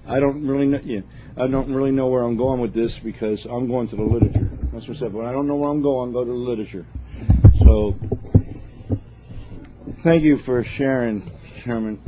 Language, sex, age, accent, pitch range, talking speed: English, male, 50-69, American, 110-150 Hz, 210 wpm